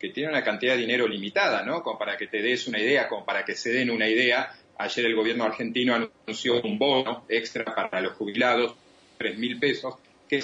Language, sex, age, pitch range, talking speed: Spanish, male, 40-59, 105-120 Hz, 205 wpm